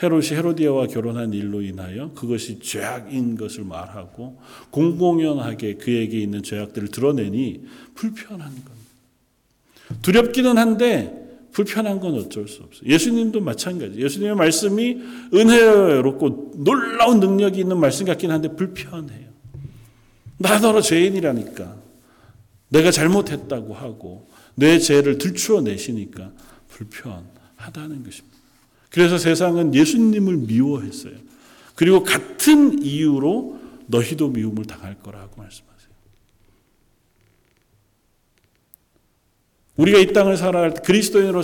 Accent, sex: native, male